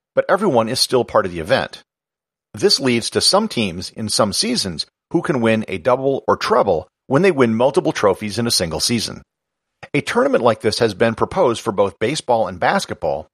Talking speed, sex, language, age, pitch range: 200 wpm, male, English, 50-69, 110-145 Hz